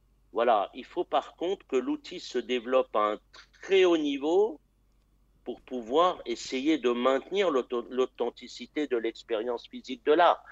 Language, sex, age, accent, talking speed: French, male, 60-79, French, 145 wpm